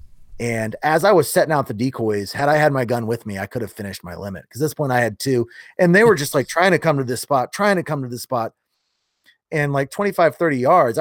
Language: English